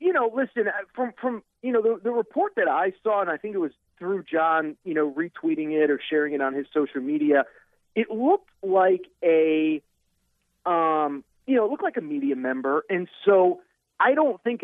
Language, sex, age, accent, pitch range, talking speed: English, male, 40-59, American, 160-225 Hz, 200 wpm